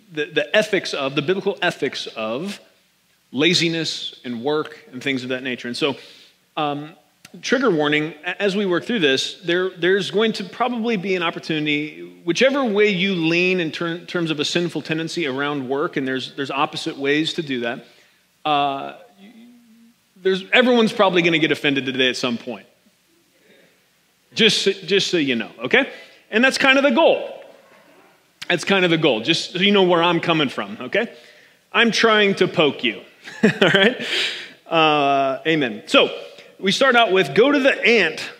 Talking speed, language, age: 175 wpm, English, 30-49